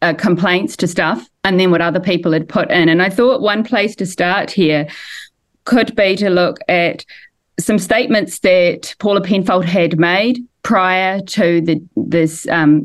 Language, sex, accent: English, female, Australian